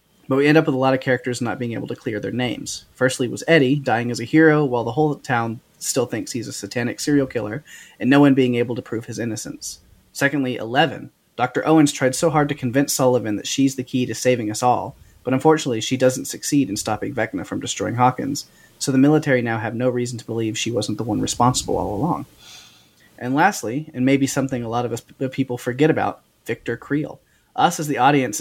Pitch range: 120-140 Hz